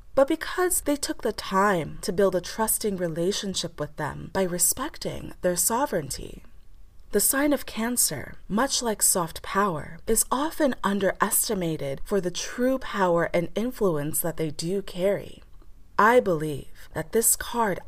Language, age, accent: English, 20-39, American